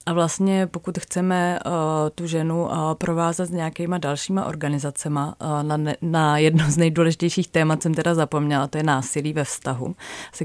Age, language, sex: 30-49, Czech, female